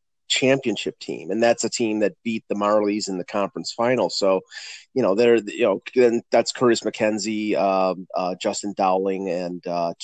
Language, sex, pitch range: English, male, 105-125 Hz